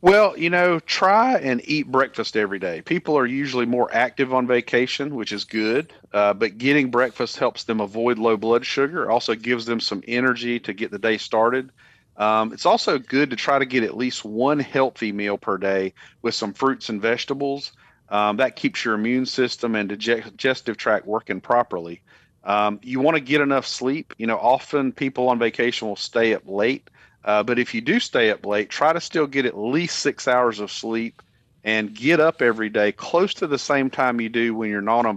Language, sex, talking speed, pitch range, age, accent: English, male, 210 wpm, 110-130 Hz, 40-59, American